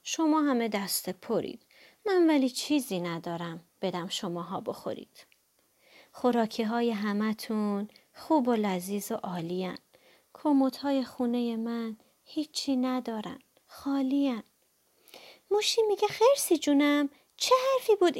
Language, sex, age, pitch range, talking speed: Persian, female, 30-49, 220-320 Hz, 115 wpm